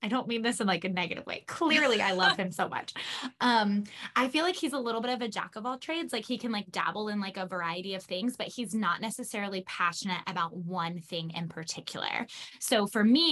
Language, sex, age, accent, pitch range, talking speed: English, female, 10-29, American, 185-225 Hz, 240 wpm